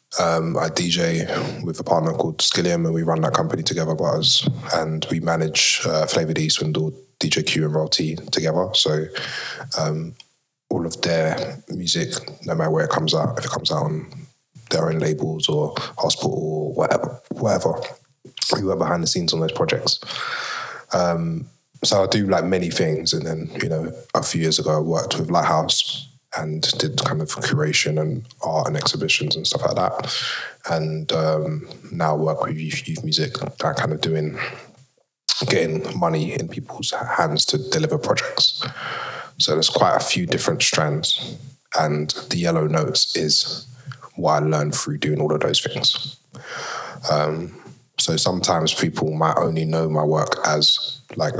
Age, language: 20-39, English